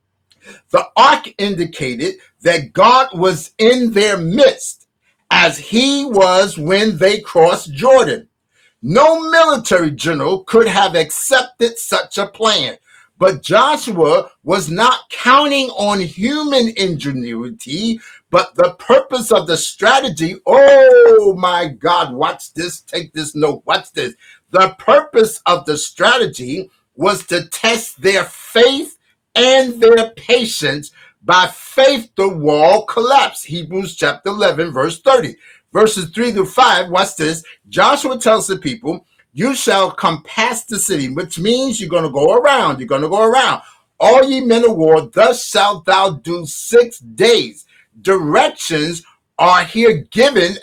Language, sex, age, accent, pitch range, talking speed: Russian, male, 50-69, American, 170-250 Hz, 135 wpm